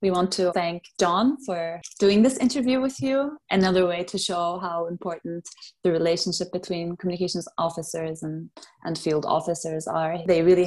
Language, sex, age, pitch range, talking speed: English, female, 20-39, 170-200 Hz, 165 wpm